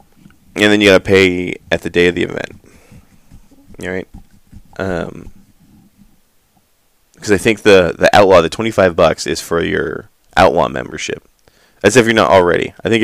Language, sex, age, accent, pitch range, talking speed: English, male, 20-39, American, 90-105 Hz, 160 wpm